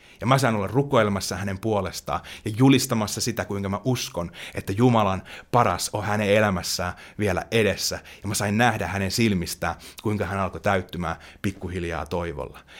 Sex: male